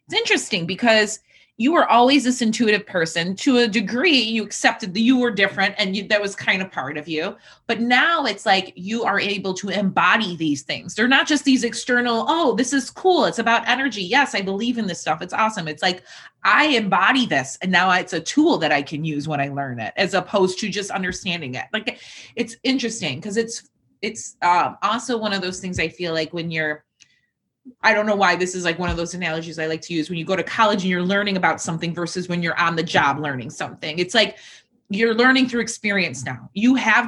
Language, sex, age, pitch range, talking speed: English, female, 30-49, 175-235 Hz, 225 wpm